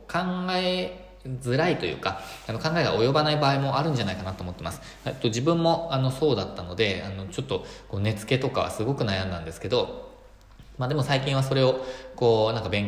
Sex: male